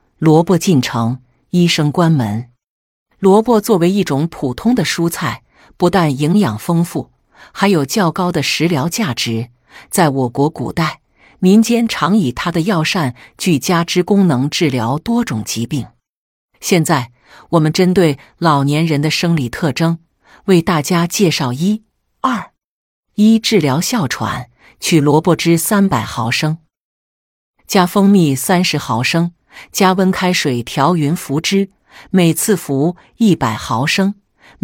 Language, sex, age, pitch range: Chinese, female, 50-69, 135-190 Hz